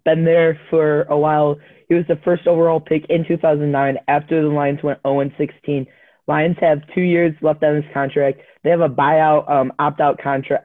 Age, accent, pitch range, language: 20-39, American, 145-170 Hz, English